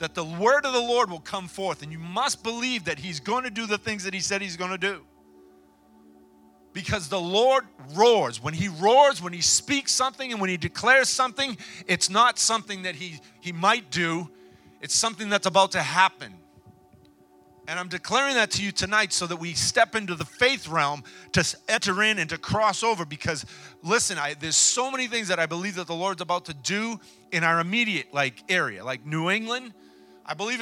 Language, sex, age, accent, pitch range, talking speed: English, male, 40-59, American, 150-220 Hz, 205 wpm